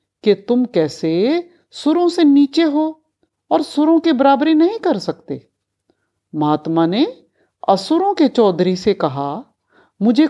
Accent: native